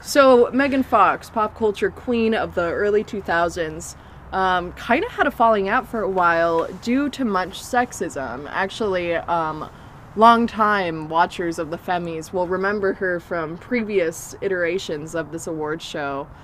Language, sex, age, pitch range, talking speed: English, female, 20-39, 170-220 Hz, 150 wpm